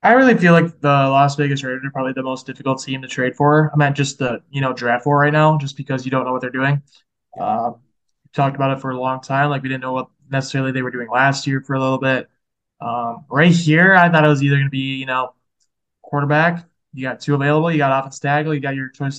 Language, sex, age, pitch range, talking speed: English, male, 20-39, 130-150 Hz, 265 wpm